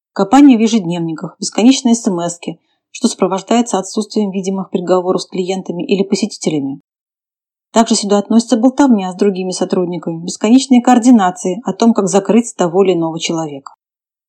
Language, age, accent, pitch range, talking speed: Russian, 30-49, native, 190-235 Hz, 130 wpm